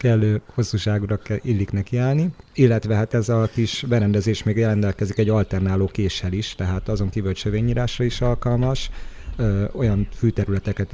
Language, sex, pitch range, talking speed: Hungarian, male, 95-110 Hz, 135 wpm